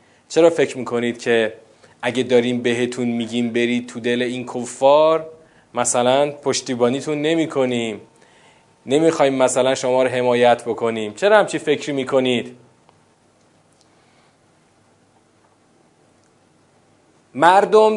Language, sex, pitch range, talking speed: Persian, male, 130-190 Hz, 100 wpm